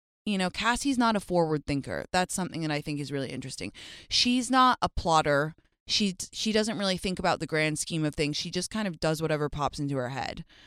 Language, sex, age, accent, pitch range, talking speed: English, female, 20-39, American, 135-180 Hz, 225 wpm